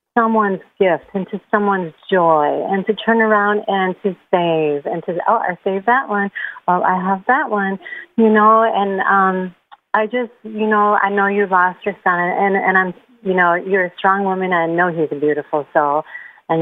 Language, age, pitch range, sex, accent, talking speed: English, 40-59, 175-215 Hz, female, American, 200 wpm